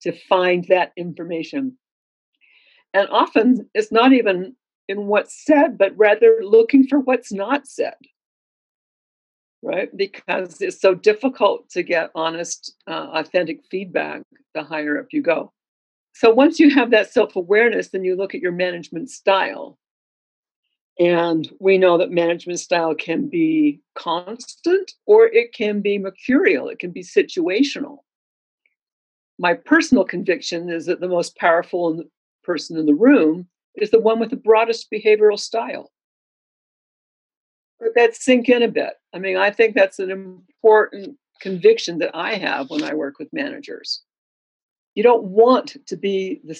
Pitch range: 180-280 Hz